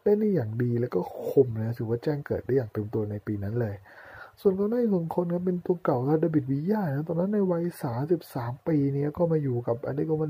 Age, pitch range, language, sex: 20-39, 115-165 Hz, Thai, male